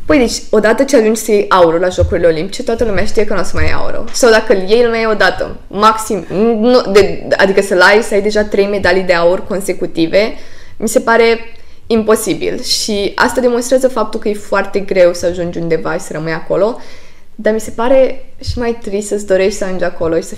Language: Romanian